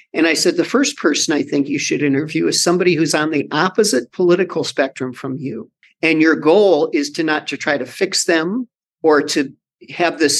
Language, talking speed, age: English, 210 wpm, 50-69